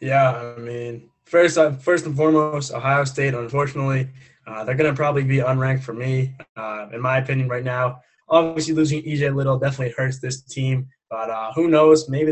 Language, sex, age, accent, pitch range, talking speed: English, male, 20-39, American, 125-155 Hz, 190 wpm